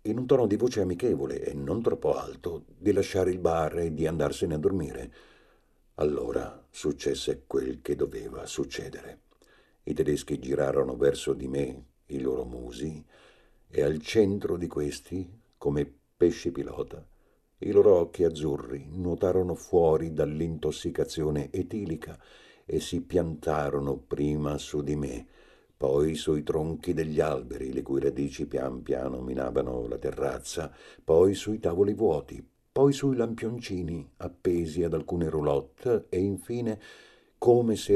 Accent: native